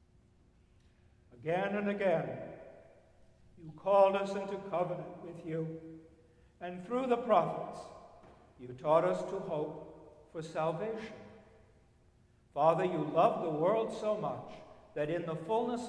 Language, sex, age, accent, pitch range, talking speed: English, male, 60-79, American, 145-190 Hz, 120 wpm